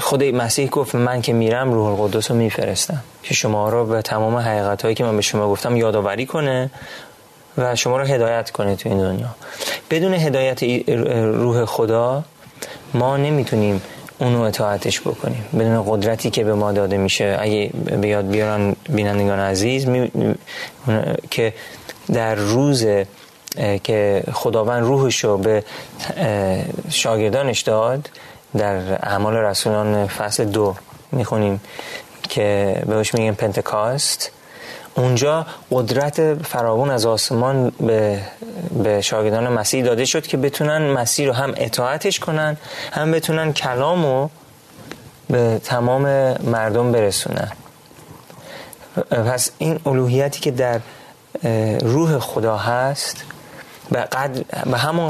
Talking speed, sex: 120 wpm, male